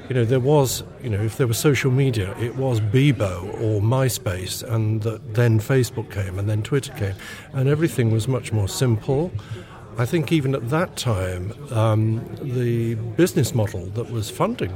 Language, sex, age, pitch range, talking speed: English, male, 50-69, 110-130 Hz, 175 wpm